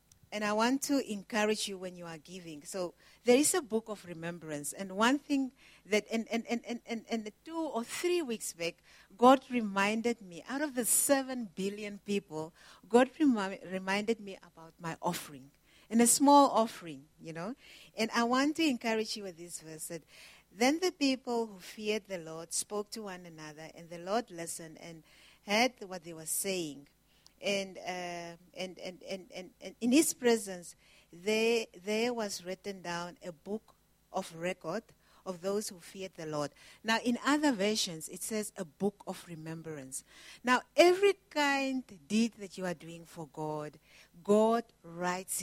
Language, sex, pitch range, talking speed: English, female, 170-235 Hz, 170 wpm